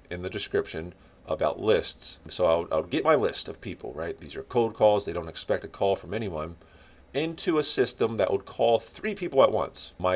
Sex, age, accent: male, 40-59, American